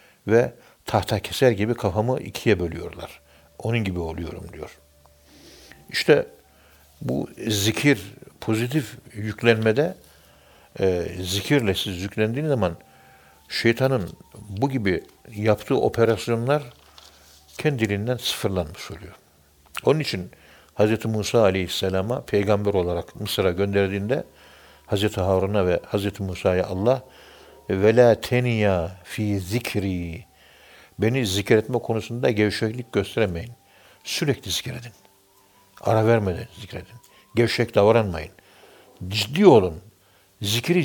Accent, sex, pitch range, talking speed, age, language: native, male, 95-120 Hz, 95 wpm, 60-79, Turkish